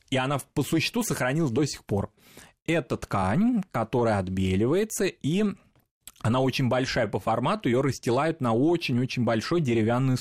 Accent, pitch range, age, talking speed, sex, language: native, 115-150 Hz, 20-39, 140 wpm, male, Russian